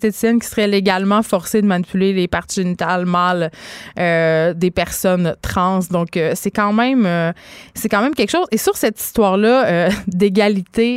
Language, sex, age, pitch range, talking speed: French, female, 20-39, 185-240 Hz, 170 wpm